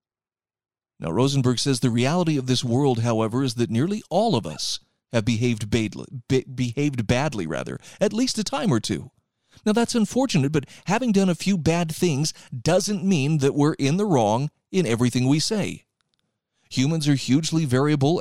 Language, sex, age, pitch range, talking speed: English, male, 40-59, 125-170 Hz, 175 wpm